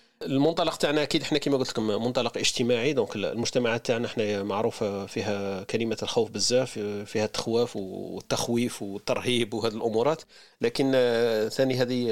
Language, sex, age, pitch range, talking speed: Arabic, male, 40-59, 105-130 Hz, 135 wpm